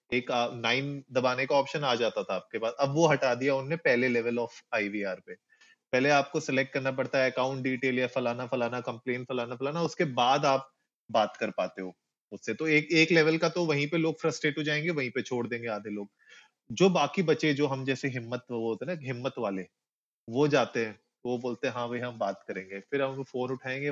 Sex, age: male, 30-49